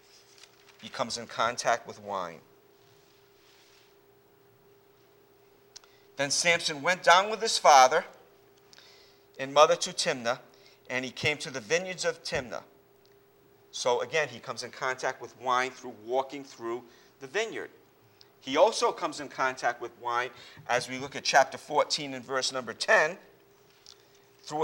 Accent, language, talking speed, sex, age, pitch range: American, English, 135 wpm, male, 50-69, 125-175 Hz